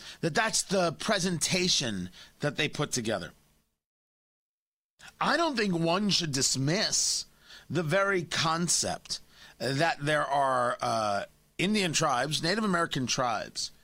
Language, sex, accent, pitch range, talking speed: English, male, American, 150-225 Hz, 115 wpm